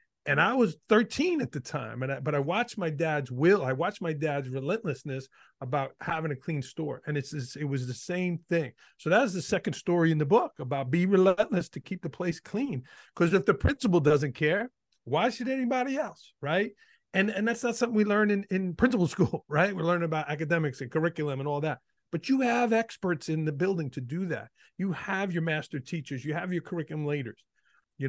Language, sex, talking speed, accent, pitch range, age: English, male, 220 wpm, American, 140-180 Hz, 40-59